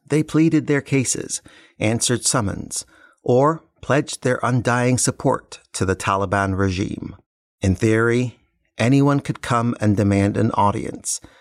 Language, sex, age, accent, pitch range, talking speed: English, male, 50-69, American, 100-125 Hz, 125 wpm